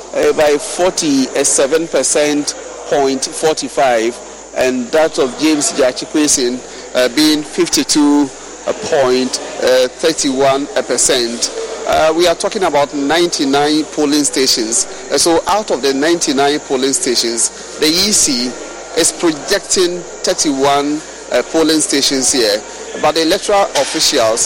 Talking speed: 110 wpm